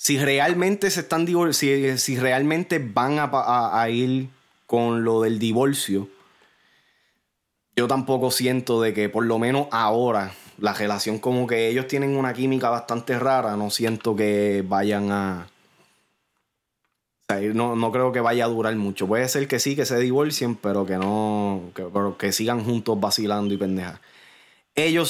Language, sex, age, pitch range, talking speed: Spanish, male, 20-39, 110-135 Hz, 165 wpm